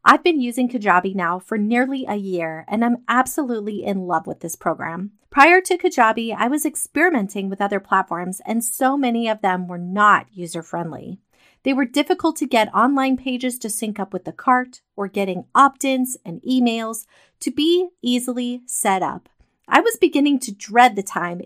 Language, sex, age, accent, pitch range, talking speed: English, female, 30-49, American, 200-275 Hz, 180 wpm